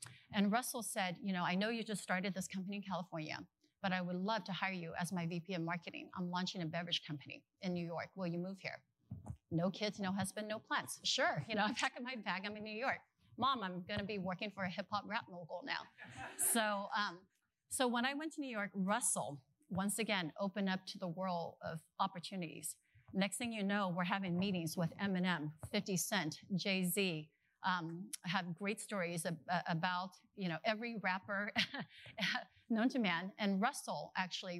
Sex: female